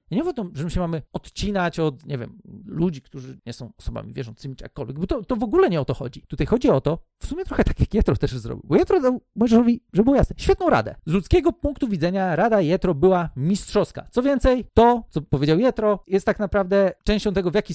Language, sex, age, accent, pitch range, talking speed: Polish, male, 40-59, native, 145-215 Hz, 240 wpm